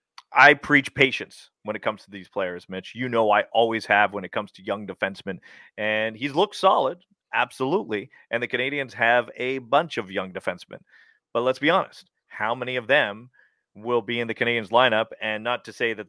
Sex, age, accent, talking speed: male, 30-49, American, 200 wpm